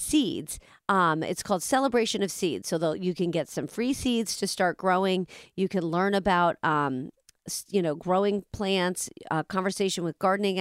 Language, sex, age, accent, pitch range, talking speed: English, female, 40-59, American, 160-200 Hz, 170 wpm